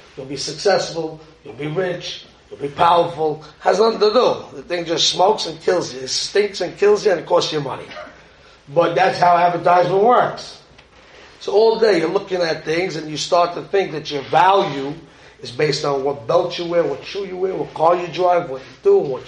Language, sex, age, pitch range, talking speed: English, male, 30-49, 150-200 Hz, 215 wpm